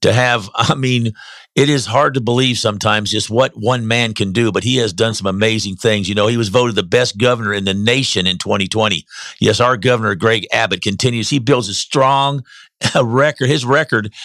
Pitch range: 110-135 Hz